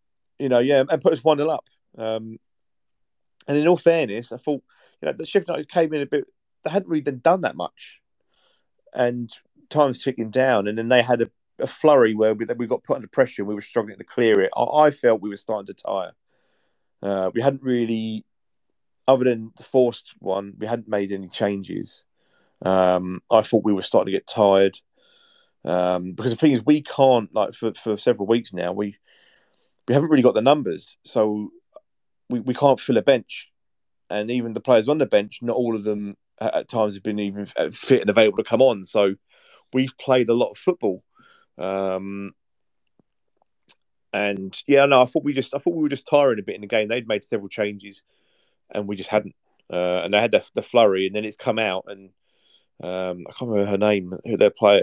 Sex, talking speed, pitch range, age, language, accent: male, 210 wpm, 100-135 Hz, 30-49, English, British